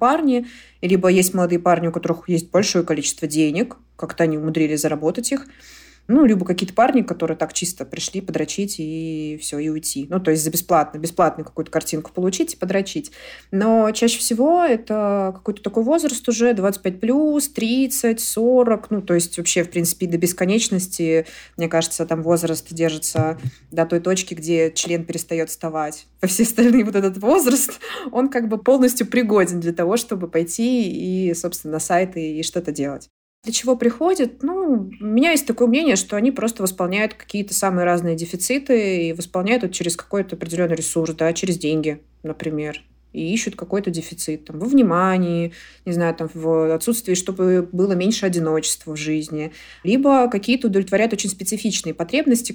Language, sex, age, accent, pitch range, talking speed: Russian, female, 20-39, native, 165-220 Hz, 165 wpm